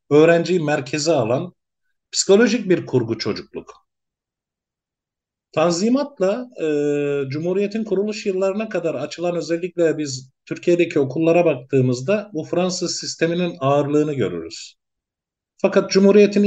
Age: 50-69